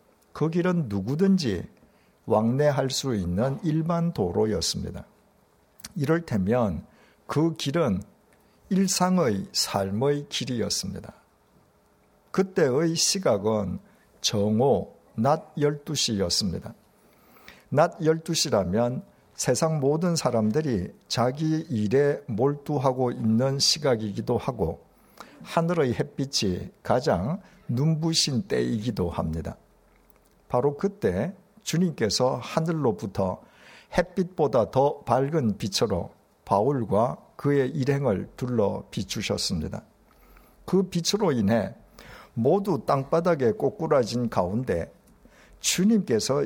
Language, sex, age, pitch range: Korean, male, 60-79, 115-170 Hz